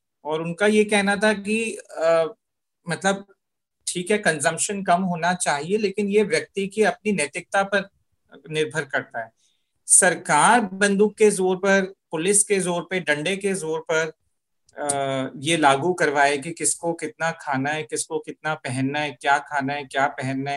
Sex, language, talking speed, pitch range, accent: male, Hindi, 160 wpm, 150-195 Hz, native